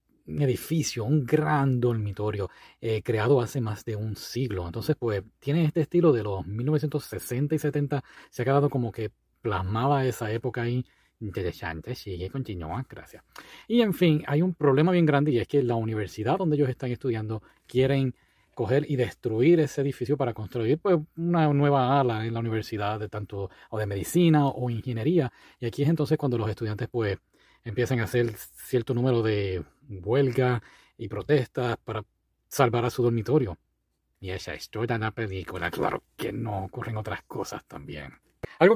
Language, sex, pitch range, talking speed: Spanish, male, 110-145 Hz, 170 wpm